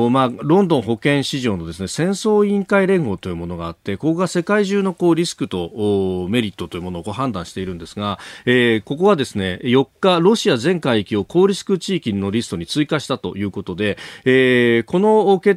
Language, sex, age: Japanese, male, 40-59